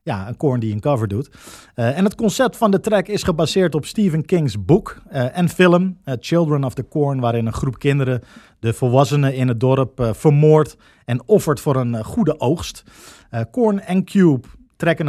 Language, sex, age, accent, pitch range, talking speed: Dutch, male, 50-69, Dutch, 130-170 Hz, 205 wpm